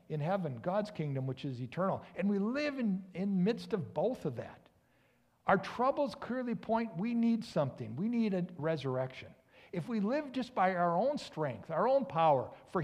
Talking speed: 185 wpm